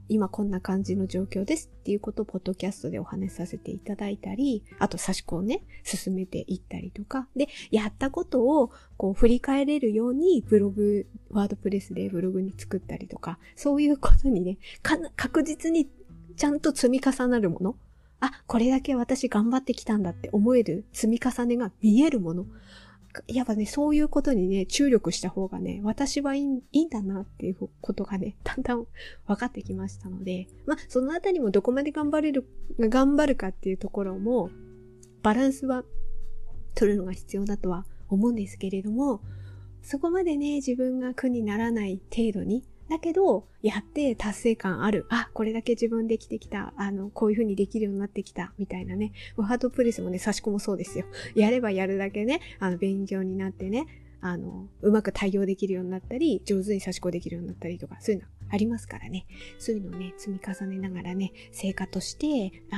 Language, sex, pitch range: Japanese, female, 190-250 Hz